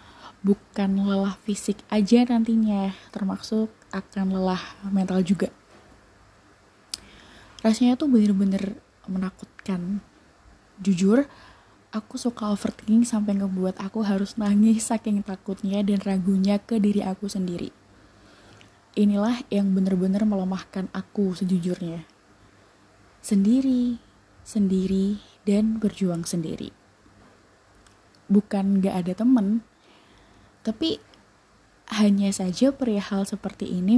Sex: female